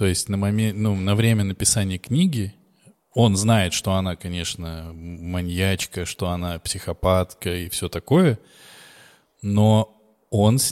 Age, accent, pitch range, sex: 20-39, native, 90-110 Hz, male